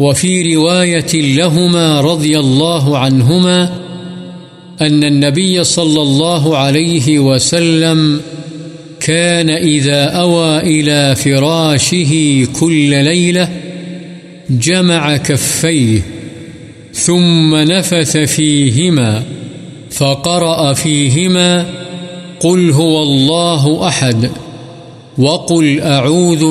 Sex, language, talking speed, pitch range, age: male, Urdu, 70 wpm, 140-165 Hz, 50-69